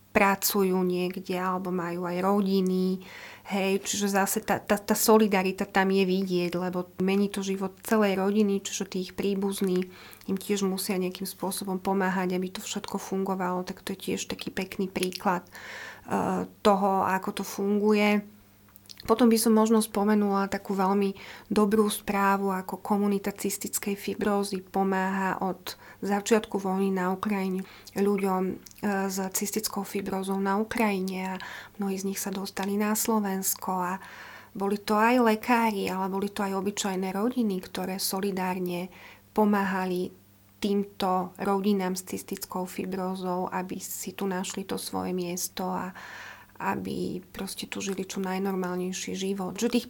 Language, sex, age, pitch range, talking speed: Slovak, female, 30-49, 185-205 Hz, 140 wpm